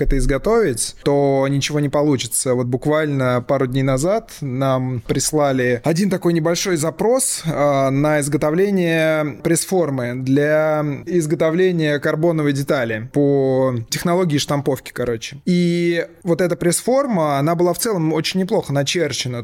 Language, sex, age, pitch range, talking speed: Russian, male, 20-39, 140-170 Hz, 125 wpm